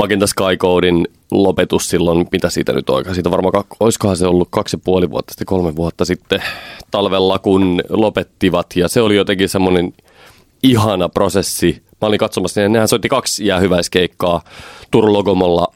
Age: 30-49